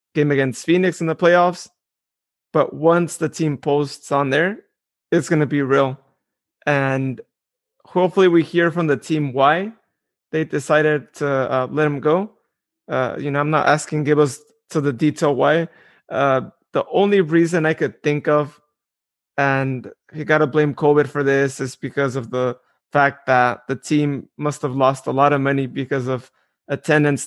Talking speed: 170 wpm